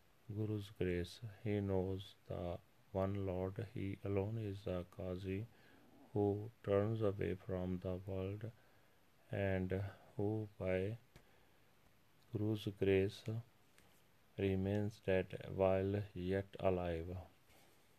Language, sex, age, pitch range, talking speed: Punjabi, male, 30-49, 95-105 Hz, 100 wpm